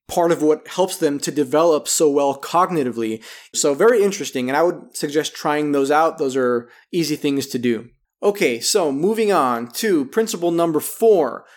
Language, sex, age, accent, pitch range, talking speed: English, male, 20-39, American, 145-200 Hz, 175 wpm